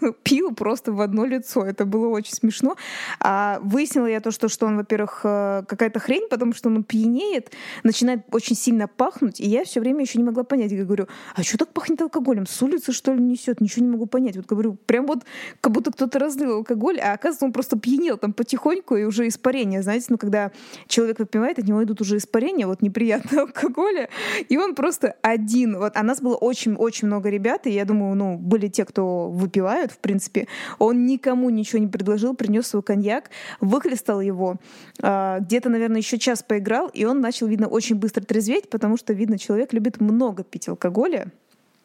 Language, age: Russian, 20-39